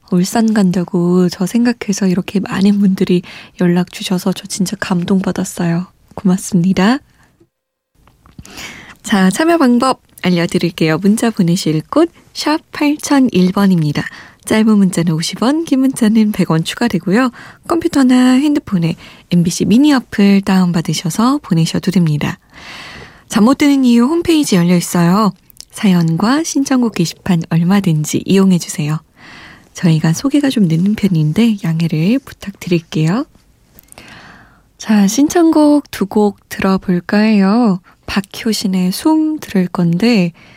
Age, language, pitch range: 20-39, Korean, 175-230 Hz